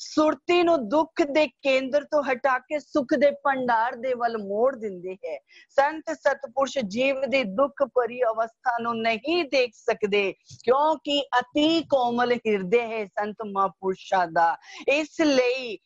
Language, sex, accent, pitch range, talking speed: Hindi, female, native, 225-285 Hz, 110 wpm